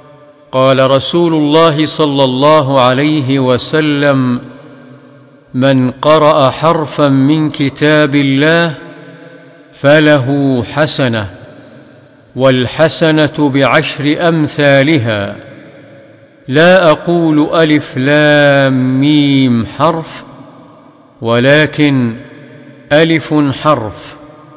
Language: Arabic